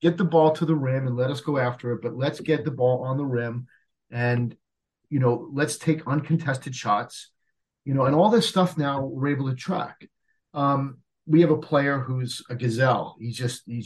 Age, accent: 40-59, American